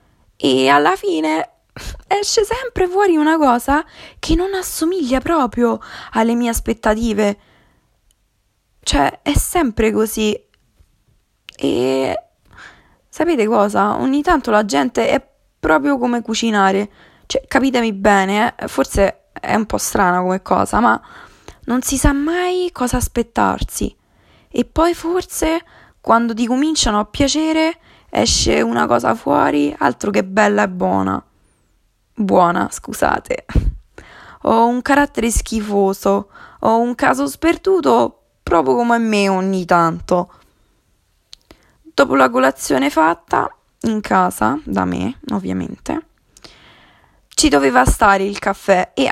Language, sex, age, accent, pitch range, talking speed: Italian, female, 20-39, native, 185-295 Hz, 115 wpm